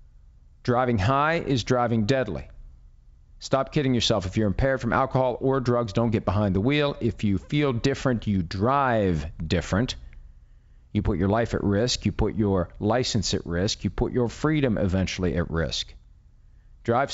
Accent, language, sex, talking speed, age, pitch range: American, English, male, 165 wpm, 50-69, 95-130 Hz